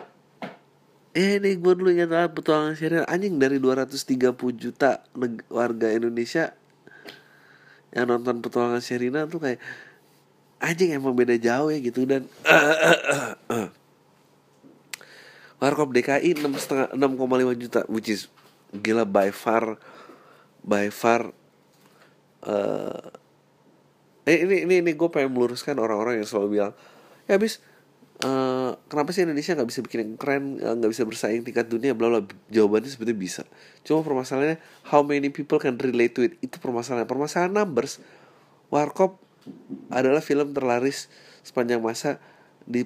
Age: 30-49